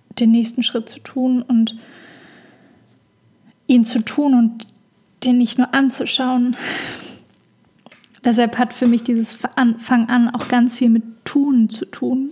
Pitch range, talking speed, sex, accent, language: 230-255 Hz, 135 wpm, female, German, English